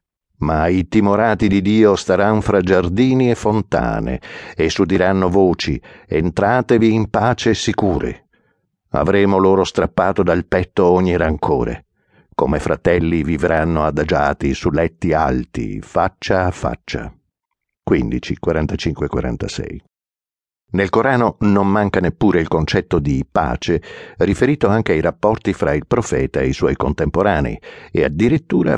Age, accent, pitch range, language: 60-79, native, 80-105 Hz, Italian